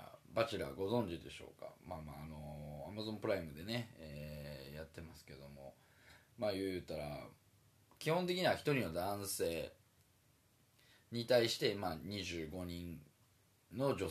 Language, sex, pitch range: Japanese, male, 90-130 Hz